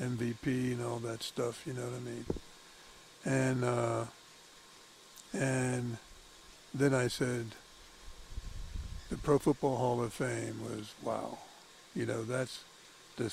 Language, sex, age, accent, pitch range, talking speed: English, male, 60-79, American, 120-135 Hz, 125 wpm